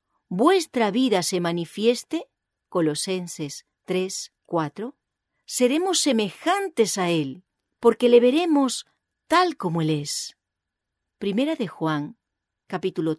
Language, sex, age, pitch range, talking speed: English, female, 40-59, 170-250 Hz, 100 wpm